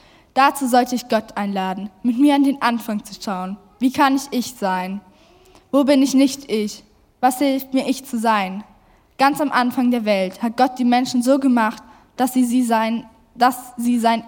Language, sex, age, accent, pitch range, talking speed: German, female, 10-29, German, 215-255 Hz, 185 wpm